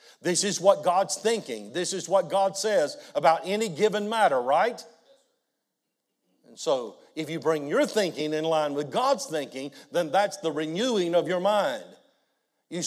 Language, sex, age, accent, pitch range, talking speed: English, male, 50-69, American, 150-210 Hz, 165 wpm